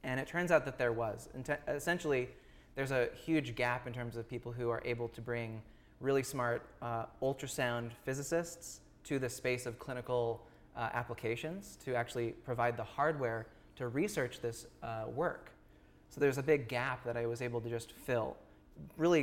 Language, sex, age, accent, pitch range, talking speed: English, male, 20-39, American, 115-130 Hz, 175 wpm